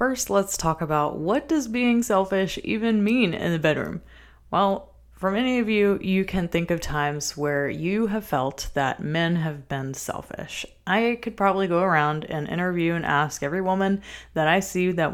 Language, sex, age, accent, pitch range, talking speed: English, female, 20-39, American, 155-200 Hz, 185 wpm